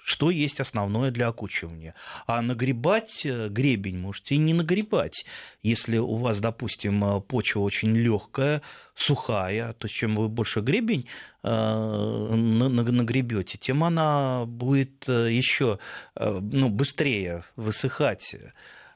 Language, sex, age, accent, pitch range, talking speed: Russian, male, 30-49, native, 100-130 Hz, 105 wpm